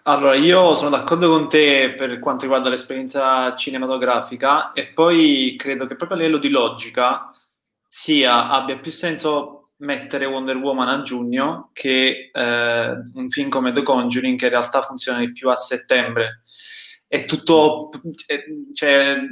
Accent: native